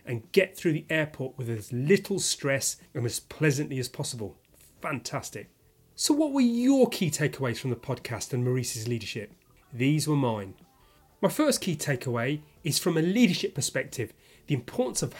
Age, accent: 30-49, British